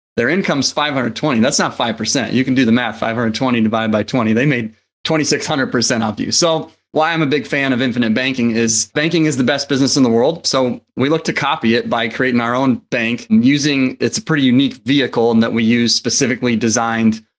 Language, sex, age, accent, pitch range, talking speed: English, male, 30-49, American, 110-135 Hz, 215 wpm